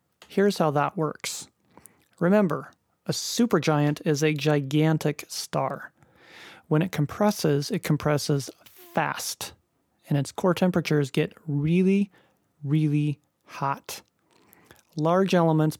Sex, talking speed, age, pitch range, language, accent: male, 105 wpm, 30-49, 145-170 Hz, English, American